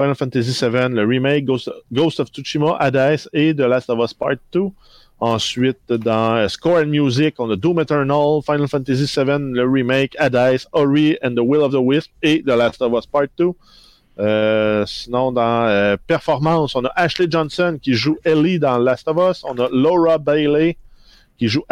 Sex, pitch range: male, 115-155 Hz